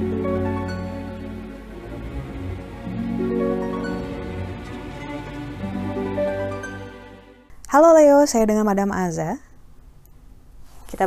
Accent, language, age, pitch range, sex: native, Indonesian, 20-39, 165-220 Hz, female